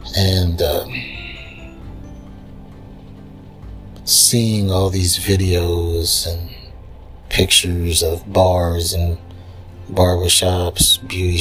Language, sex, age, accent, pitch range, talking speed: English, male, 30-49, American, 90-95 Hz, 75 wpm